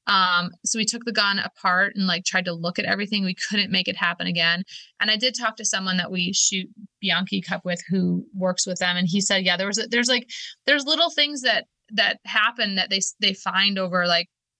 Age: 20-39